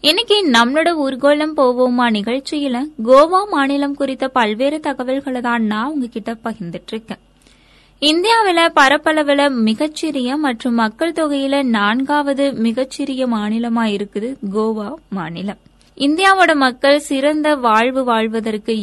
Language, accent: Tamil, native